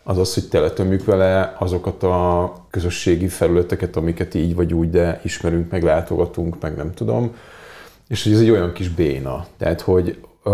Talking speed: 155 wpm